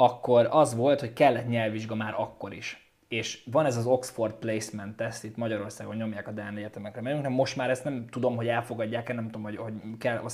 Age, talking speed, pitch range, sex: 20-39, 205 wpm, 115-140 Hz, male